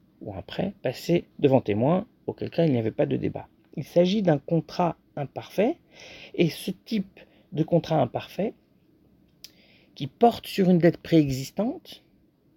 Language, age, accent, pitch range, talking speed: French, 50-69, French, 135-195 Hz, 150 wpm